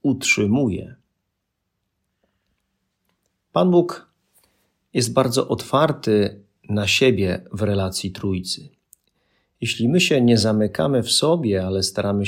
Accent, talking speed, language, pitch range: native, 100 wpm, Polish, 95-120 Hz